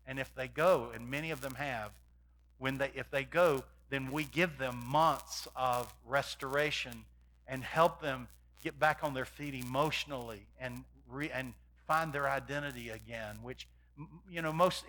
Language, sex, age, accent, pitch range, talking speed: English, male, 50-69, American, 140-205 Hz, 165 wpm